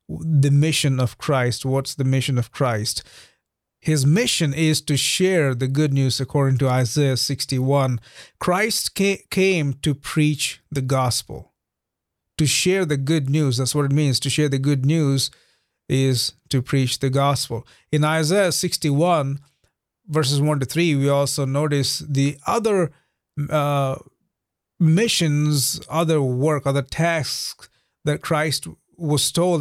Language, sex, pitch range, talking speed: English, male, 135-165 Hz, 140 wpm